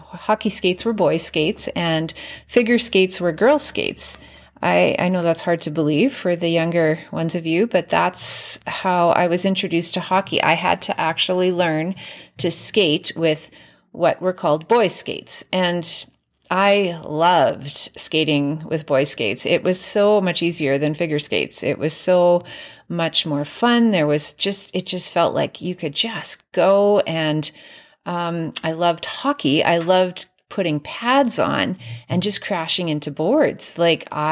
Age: 30-49